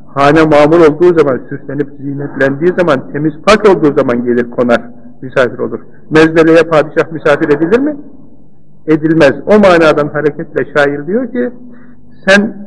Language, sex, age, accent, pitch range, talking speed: Turkish, male, 50-69, native, 150-190 Hz, 135 wpm